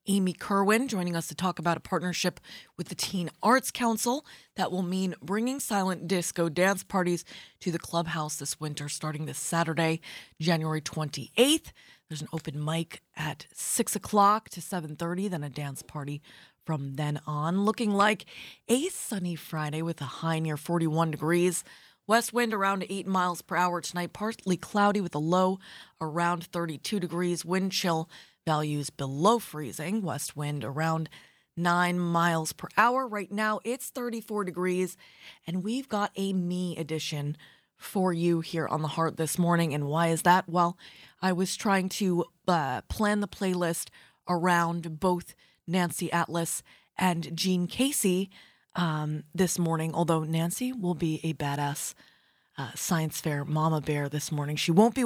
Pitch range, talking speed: 160-195 Hz, 160 wpm